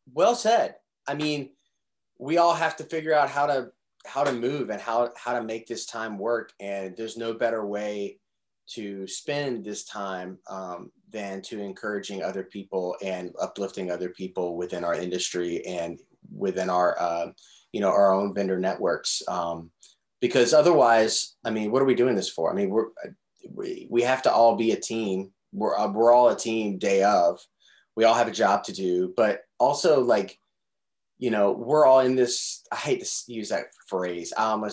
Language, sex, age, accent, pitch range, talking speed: English, male, 30-49, American, 95-120 Hz, 185 wpm